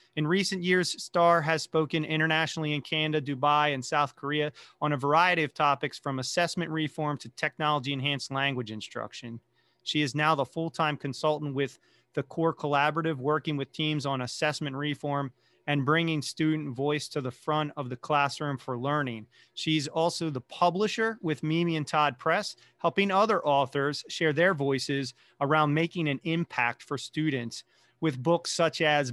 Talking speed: 165 wpm